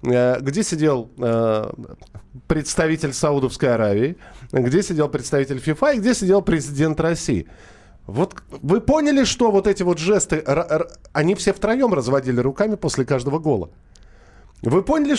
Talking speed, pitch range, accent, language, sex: 135 wpm, 120-165 Hz, native, Russian, male